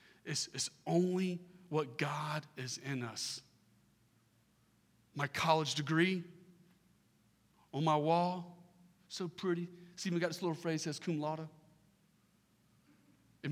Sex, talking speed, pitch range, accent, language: male, 120 wpm, 125-170 Hz, American, English